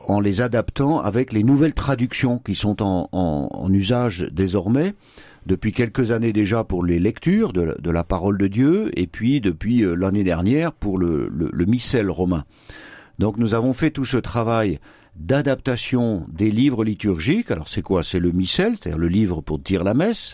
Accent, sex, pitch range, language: French, male, 95-125 Hz, French